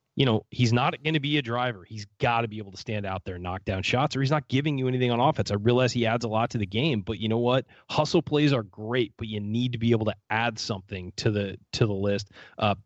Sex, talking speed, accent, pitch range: male, 290 wpm, American, 105-120 Hz